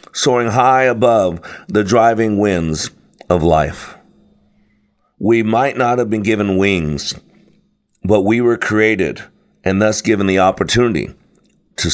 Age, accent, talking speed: 50-69, American, 125 wpm